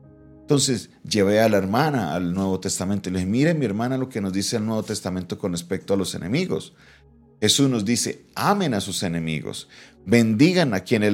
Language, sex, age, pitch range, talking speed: Spanish, male, 40-59, 90-115 Hz, 195 wpm